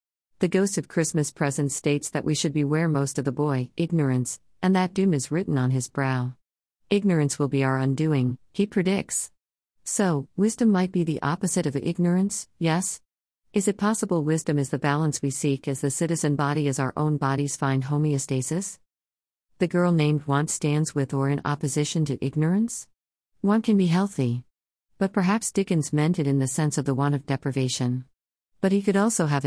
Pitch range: 135-175 Hz